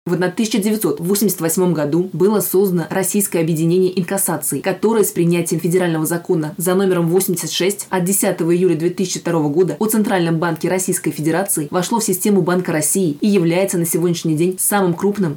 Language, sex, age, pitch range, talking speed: Russian, female, 20-39, 165-190 Hz, 150 wpm